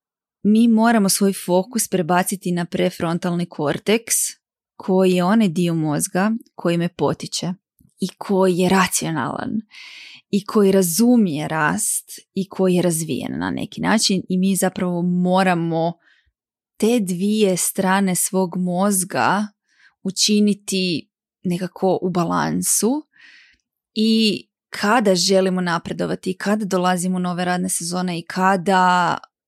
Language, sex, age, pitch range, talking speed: Croatian, female, 20-39, 180-210 Hz, 110 wpm